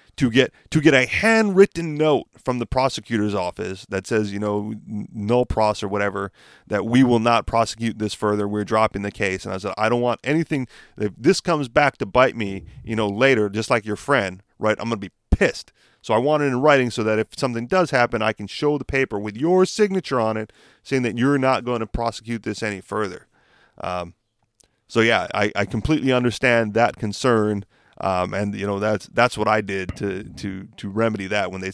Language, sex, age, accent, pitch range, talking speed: English, male, 30-49, American, 105-130 Hz, 220 wpm